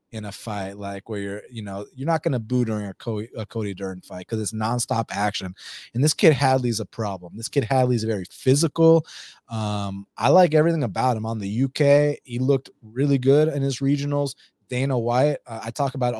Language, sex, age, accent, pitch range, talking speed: English, male, 30-49, American, 110-130 Hz, 200 wpm